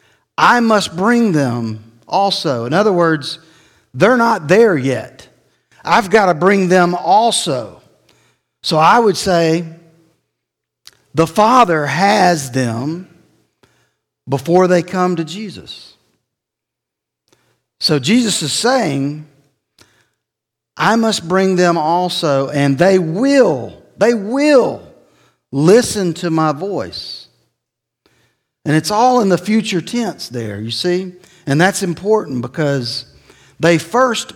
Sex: male